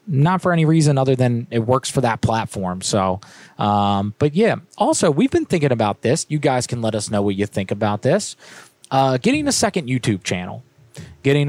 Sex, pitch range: male, 110-145 Hz